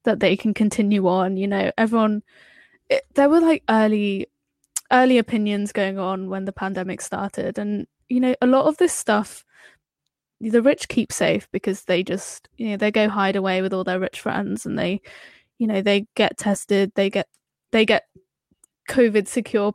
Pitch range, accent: 200-255 Hz, British